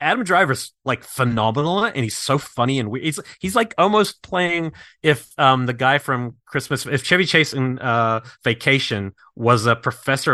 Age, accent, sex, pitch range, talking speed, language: 30-49, American, male, 105-140 Hz, 175 wpm, English